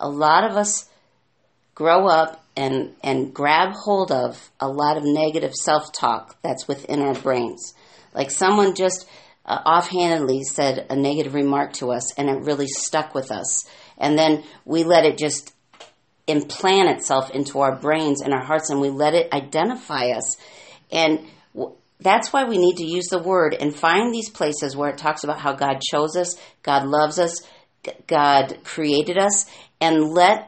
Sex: female